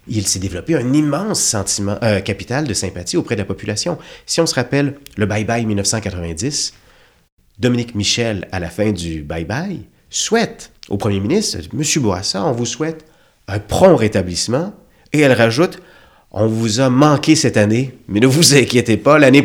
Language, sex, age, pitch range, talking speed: French, male, 30-49, 105-150 Hz, 175 wpm